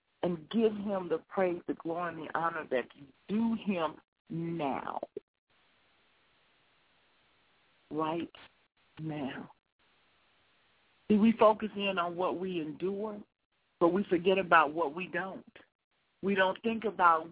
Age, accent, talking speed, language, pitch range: 50-69, American, 125 wpm, English, 175-215 Hz